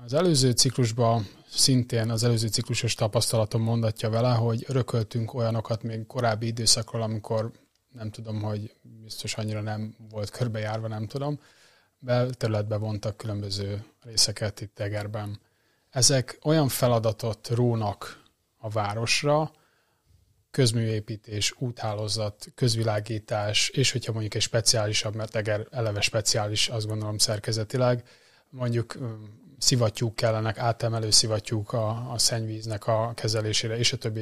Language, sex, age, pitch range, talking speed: Hungarian, male, 20-39, 110-125 Hz, 115 wpm